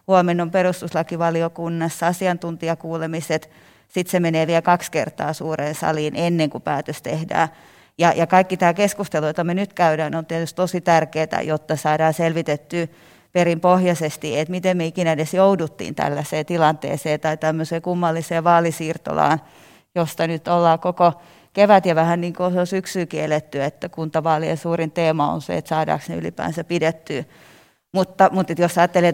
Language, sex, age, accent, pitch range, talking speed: Finnish, female, 30-49, native, 160-180 Hz, 145 wpm